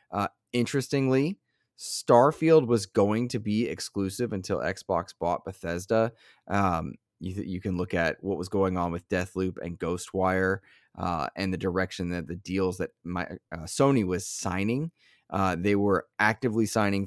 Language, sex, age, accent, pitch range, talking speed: English, male, 20-39, American, 95-110 Hz, 160 wpm